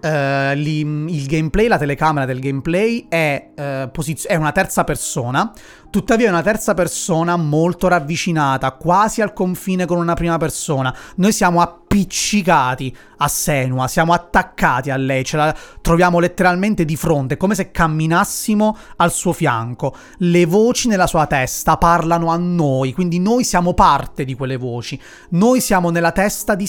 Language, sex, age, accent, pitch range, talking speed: Italian, male, 30-49, native, 140-180 Hz, 150 wpm